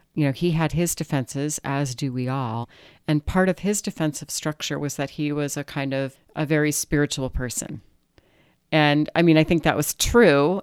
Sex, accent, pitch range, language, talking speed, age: female, American, 130-155 Hz, English, 200 wpm, 40-59